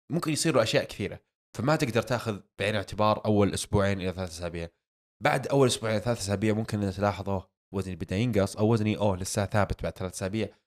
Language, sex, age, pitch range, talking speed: Arabic, male, 20-39, 95-110 Hz, 190 wpm